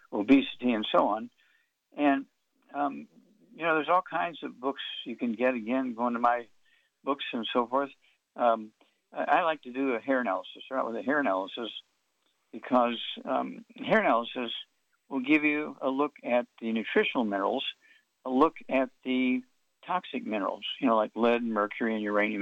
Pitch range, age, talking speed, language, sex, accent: 115-150 Hz, 60-79, 170 wpm, English, male, American